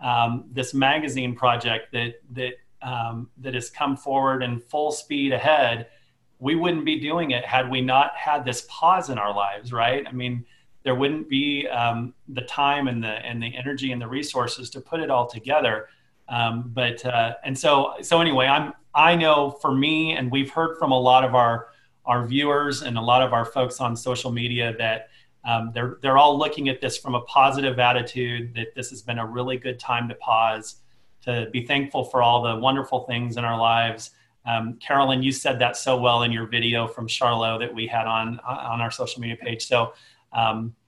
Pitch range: 120-135 Hz